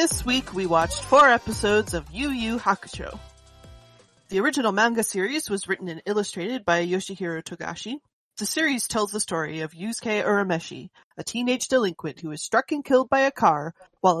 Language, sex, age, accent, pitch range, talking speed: English, female, 30-49, American, 175-230 Hz, 175 wpm